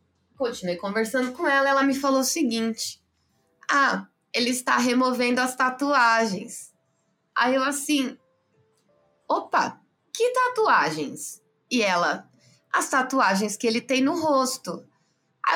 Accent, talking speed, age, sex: Brazilian, 120 wpm, 20-39, female